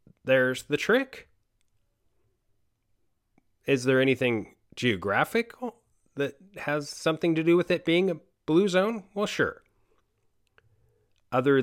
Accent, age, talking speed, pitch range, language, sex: American, 30-49, 110 wpm, 110-160 Hz, English, male